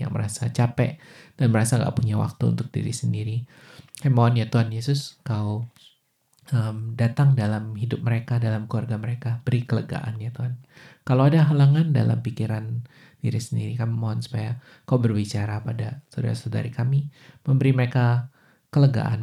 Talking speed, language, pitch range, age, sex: 145 wpm, Indonesian, 115-135 Hz, 20-39, male